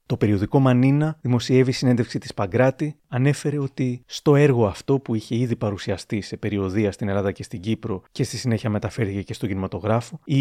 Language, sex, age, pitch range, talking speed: Greek, male, 30-49, 110-140 Hz, 180 wpm